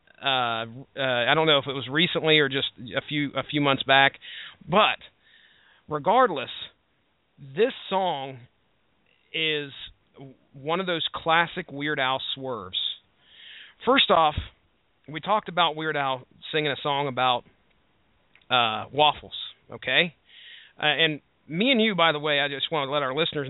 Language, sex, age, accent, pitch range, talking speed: English, male, 40-59, American, 140-175 Hz, 150 wpm